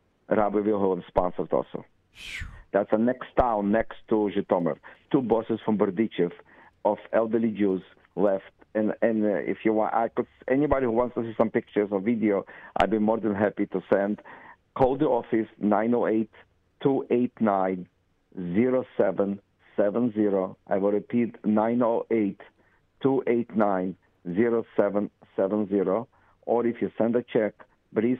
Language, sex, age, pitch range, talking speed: English, male, 50-69, 100-120 Hz, 115 wpm